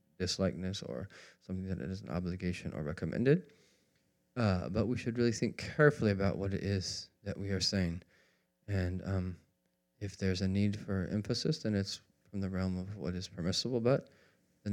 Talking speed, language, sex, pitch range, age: 175 wpm, English, male, 95-110 Hz, 20-39